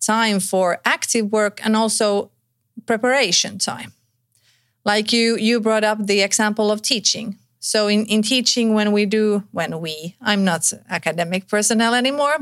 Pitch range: 185-225 Hz